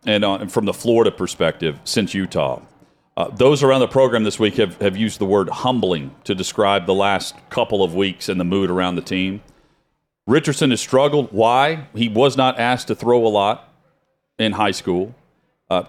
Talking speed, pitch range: 190 wpm, 105-125 Hz